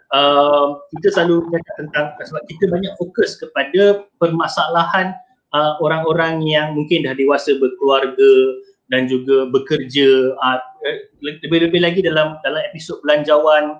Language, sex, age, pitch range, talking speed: Malay, male, 30-49, 160-215 Hz, 115 wpm